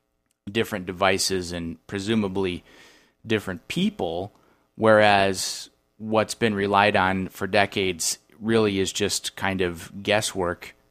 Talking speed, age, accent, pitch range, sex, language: 105 wpm, 30-49, American, 95-115 Hz, male, English